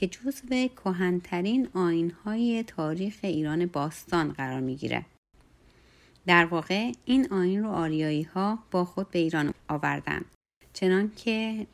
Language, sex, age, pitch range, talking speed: Persian, female, 30-49, 165-220 Hz, 120 wpm